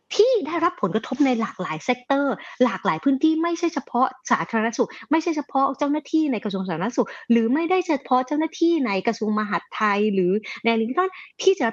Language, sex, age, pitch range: Thai, female, 30-49, 190-290 Hz